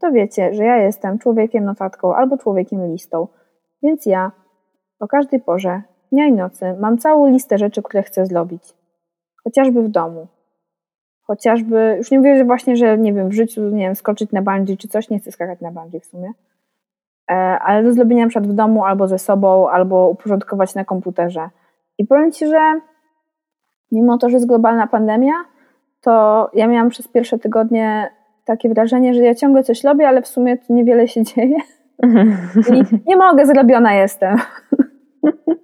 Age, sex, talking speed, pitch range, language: 20-39, female, 170 wpm, 200-260 Hz, Polish